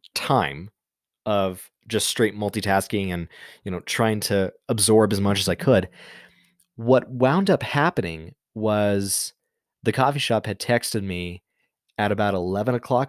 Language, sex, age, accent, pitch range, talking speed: English, male, 20-39, American, 100-120 Hz, 140 wpm